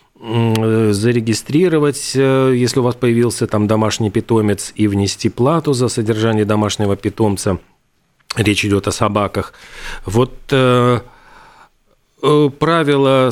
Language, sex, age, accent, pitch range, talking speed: Russian, male, 40-59, native, 105-120 Hz, 100 wpm